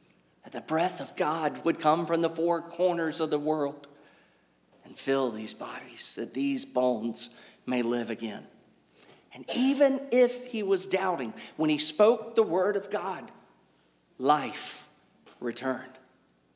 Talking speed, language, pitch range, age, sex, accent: 140 wpm, English, 140-230 Hz, 40-59, male, American